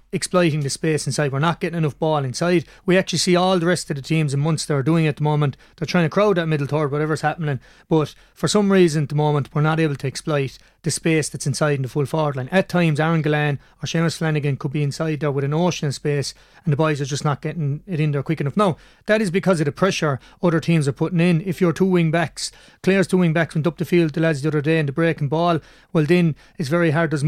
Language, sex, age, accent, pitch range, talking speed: English, male, 30-49, Irish, 145-170 Hz, 265 wpm